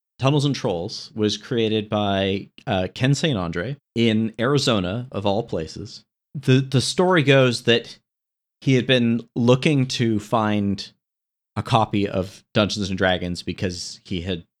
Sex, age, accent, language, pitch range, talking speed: male, 40-59, American, English, 105-140 Hz, 145 wpm